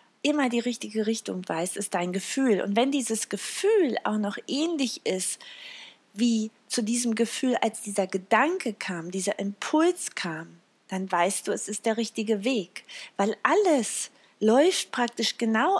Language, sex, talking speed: German, female, 150 wpm